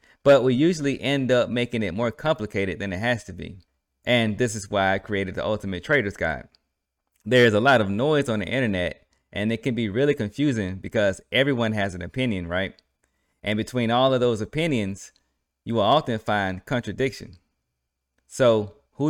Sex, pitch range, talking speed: male, 95-120 Hz, 180 wpm